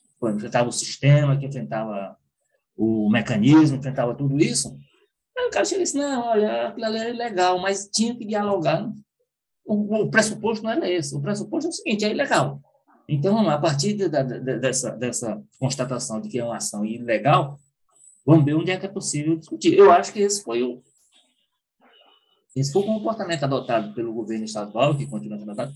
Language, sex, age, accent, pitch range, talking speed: Portuguese, male, 20-39, Brazilian, 125-195 Hz, 185 wpm